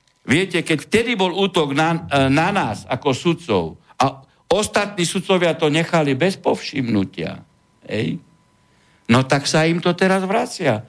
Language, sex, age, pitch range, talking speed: Slovak, male, 60-79, 145-205 Hz, 140 wpm